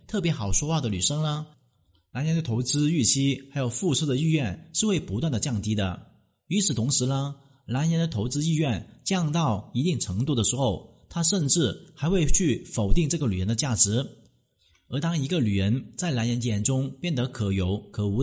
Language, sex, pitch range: Chinese, male, 115-160 Hz